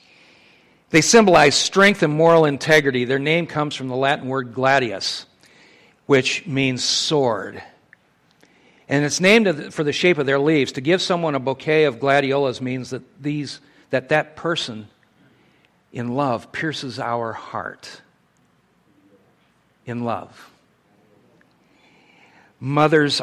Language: English